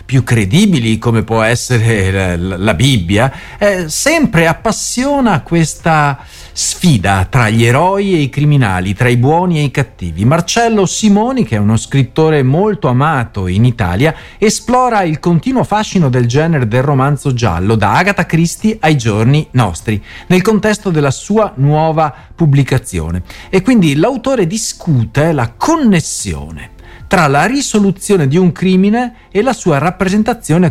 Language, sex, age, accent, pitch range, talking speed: Italian, male, 40-59, native, 115-195 Hz, 140 wpm